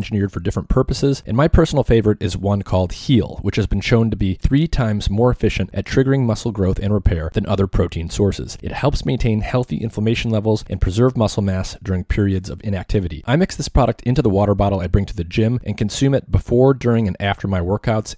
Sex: male